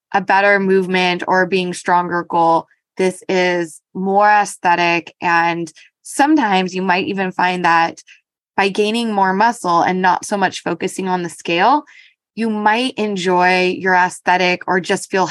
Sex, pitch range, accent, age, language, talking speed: female, 185-235 Hz, American, 20-39, English, 150 wpm